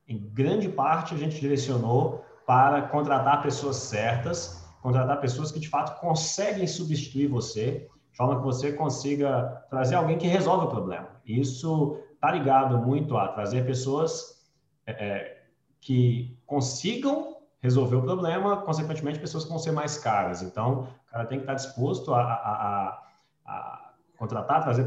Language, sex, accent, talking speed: Portuguese, male, Brazilian, 150 wpm